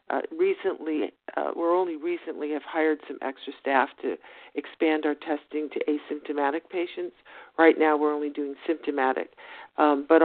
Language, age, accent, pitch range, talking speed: English, 50-69, American, 150-175 Hz, 150 wpm